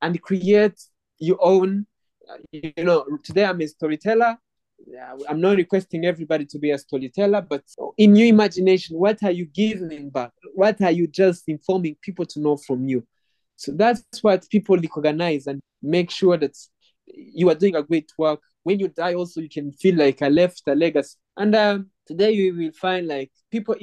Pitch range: 150-190 Hz